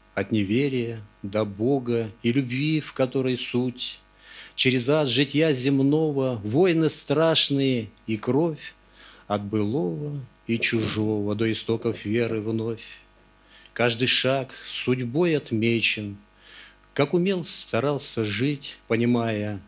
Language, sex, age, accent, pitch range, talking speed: Russian, male, 50-69, native, 105-140 Hz, 105 wpm